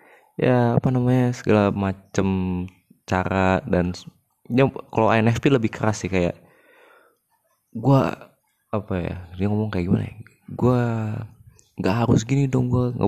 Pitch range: 95-115 Hz